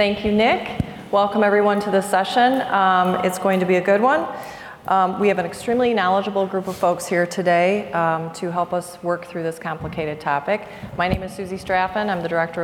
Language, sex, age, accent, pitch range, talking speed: English, female, 30-49, American, 170-205 Hz, 210 wpm